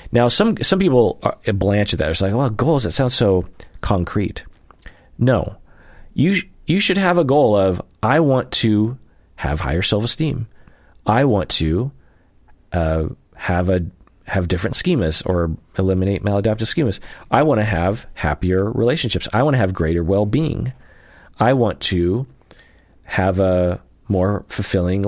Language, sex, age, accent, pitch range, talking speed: English, male, 30-49, American, 90-120 Hz, 155 wpm